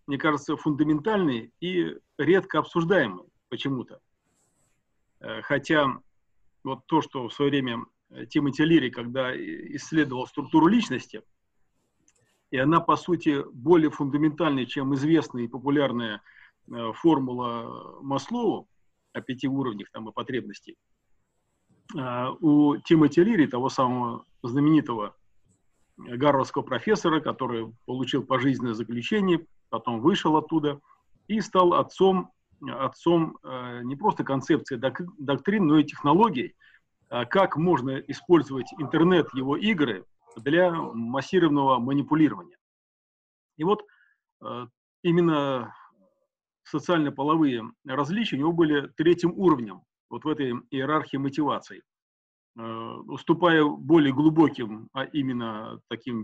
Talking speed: 100 wpm